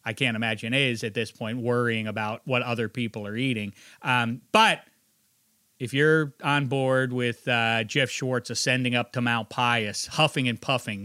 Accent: American